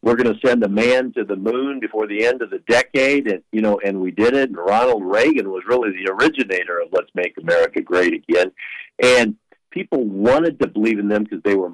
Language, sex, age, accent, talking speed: English, male, 50-69, American, 230 wpm